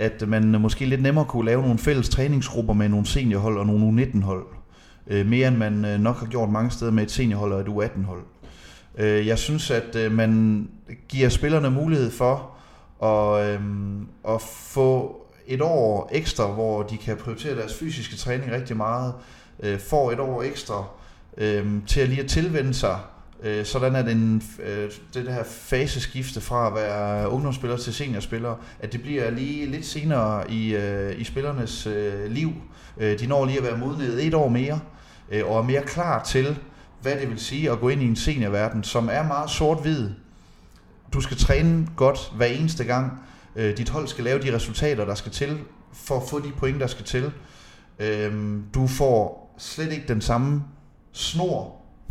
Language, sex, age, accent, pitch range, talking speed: Danish, male, 30-49, native, 105-135 Hz, 170 wpm